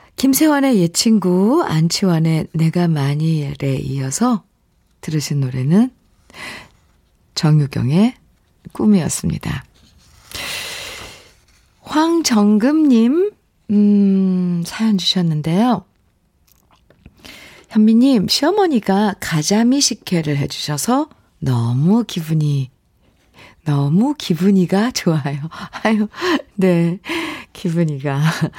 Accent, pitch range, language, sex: native, 150-215 Hz, Korean, female